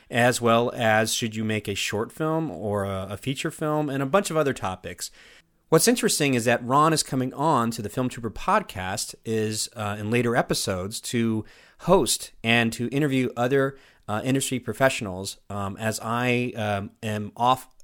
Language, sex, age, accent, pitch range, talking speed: English, male, 30-49, American, 105-130 Hz, 175 wpm